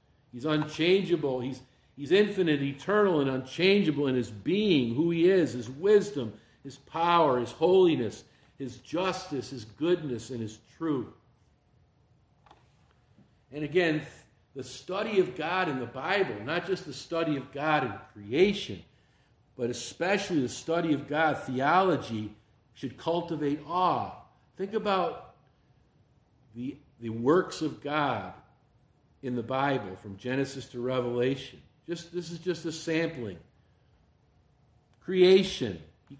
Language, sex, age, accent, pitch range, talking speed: English, male, 50-69, American, 125-165 Hz, 125 wpm